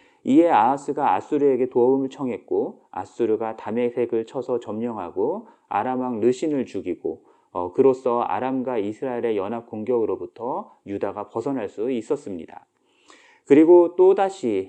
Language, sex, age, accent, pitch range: Korean, male, 30-49, native, 120-185 Hz